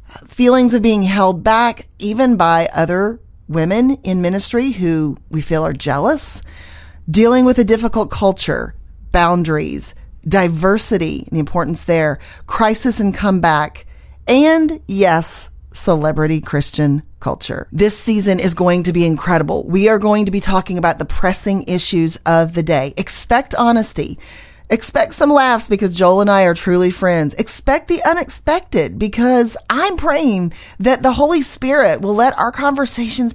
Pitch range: 165-235 Hz